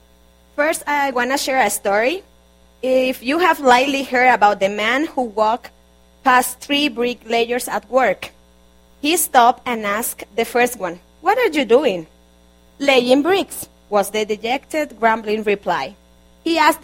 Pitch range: 190-275 Hz